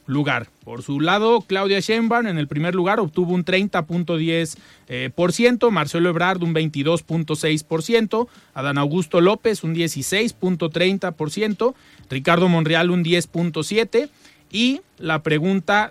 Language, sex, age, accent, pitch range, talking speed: Spanish, male, 30-49, Mexican, 150-200 Hz, 110 wpm